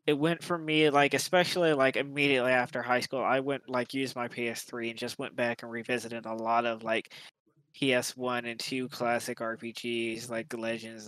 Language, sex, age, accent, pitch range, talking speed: English, male, 20-39, American, 115-130 Hz, 185 wpm